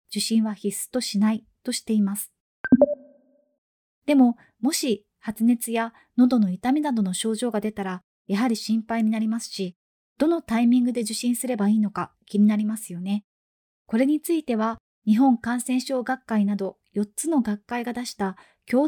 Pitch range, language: 210-265 Hz, Japanese